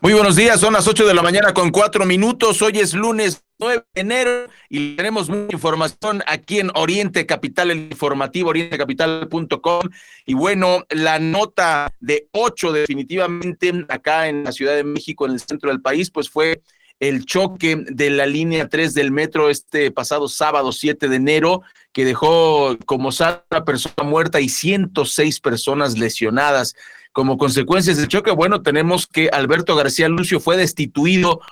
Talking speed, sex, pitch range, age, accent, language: 160 wpm, male, 145-180 Hz, 40-59, Mexican, Spanish